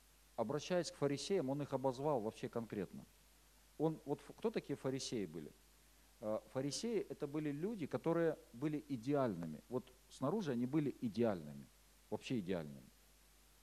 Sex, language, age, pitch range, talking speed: male, Russian, 50-69, 115-155 Hz, 115 wpm